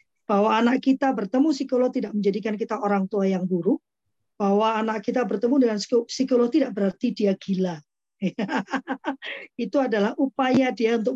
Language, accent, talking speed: Indonesian, native, 145 wpm